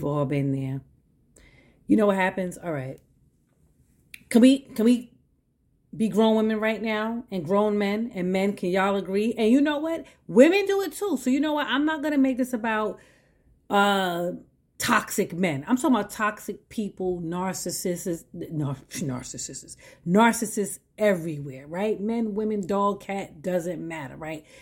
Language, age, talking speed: English, 40-59, 160 wpm